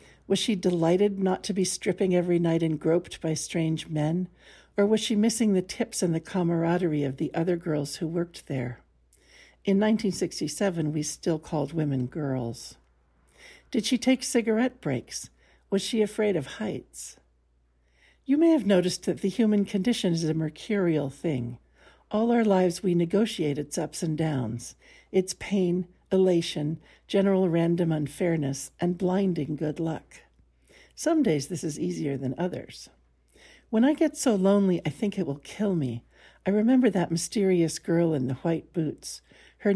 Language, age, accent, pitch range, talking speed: English, 60-79, American, 145-195 Hz, 160 wpm